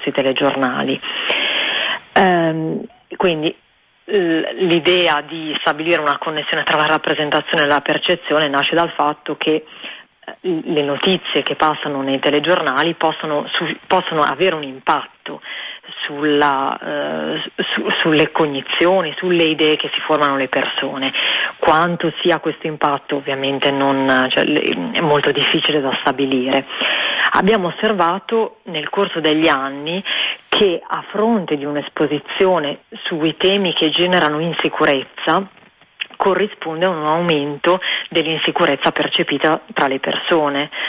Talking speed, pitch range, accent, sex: 110 wpm, 145-175 Hz, native, female